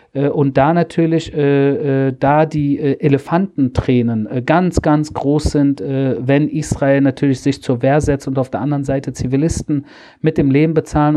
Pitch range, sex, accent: 135-160 Hz, male, German